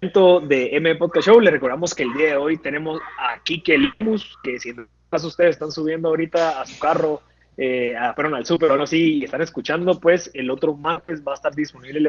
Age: 20-39